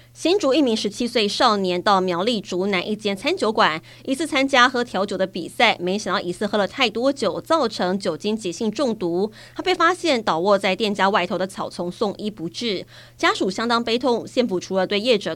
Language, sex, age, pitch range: Chinese, female, 20-39, 185-235 Hz